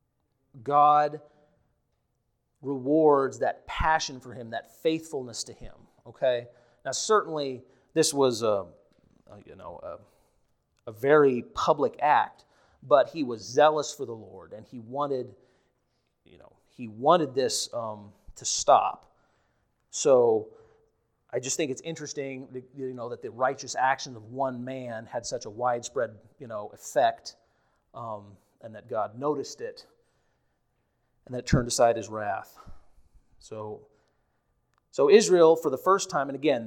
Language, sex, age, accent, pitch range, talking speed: English, male, 30-49, American, 125-180 Hz, 140 wpm